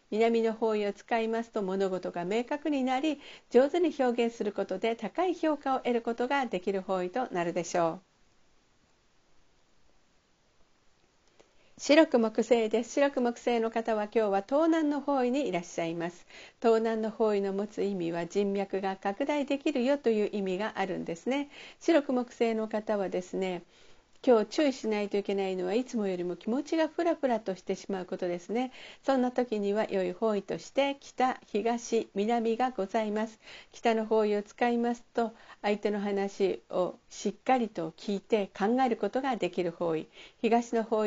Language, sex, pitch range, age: Japanese, female, 195-250 Hz, 50-69